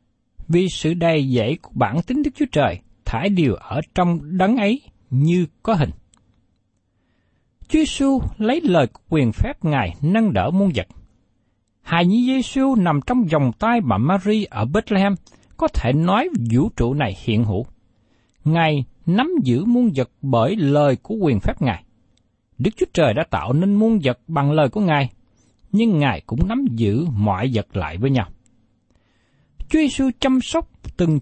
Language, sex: Vietnamese, male